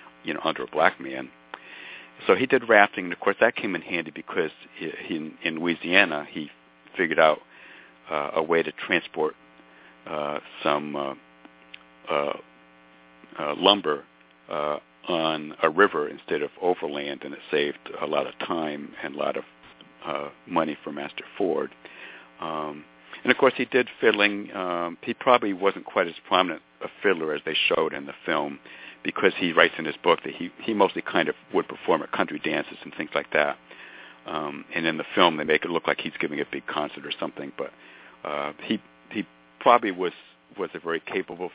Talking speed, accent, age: 185 wpm, American, 60-79